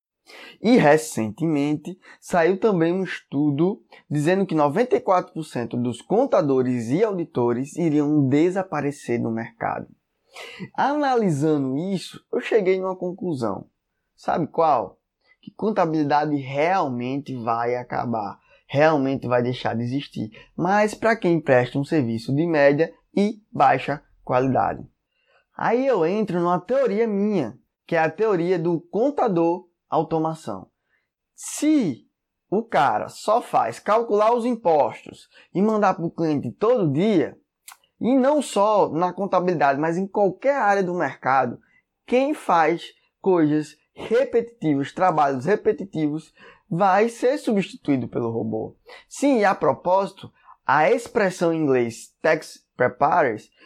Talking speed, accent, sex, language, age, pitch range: 115 wpm, Brazilian, male, Portuguese, 20-39, 145-210 Hz